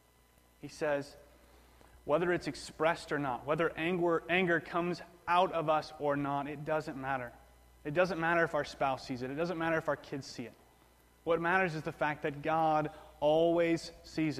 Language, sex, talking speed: English, male, 180 wpm